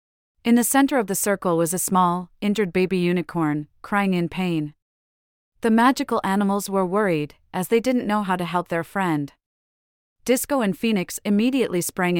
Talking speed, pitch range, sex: 165 wpm, 170-215 Hz, female